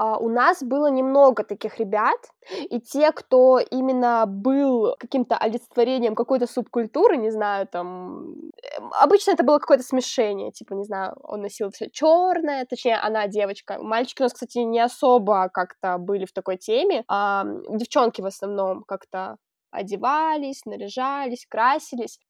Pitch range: 220-285 Hz